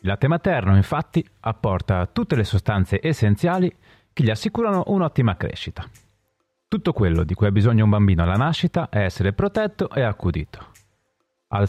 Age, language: 30-49, Italian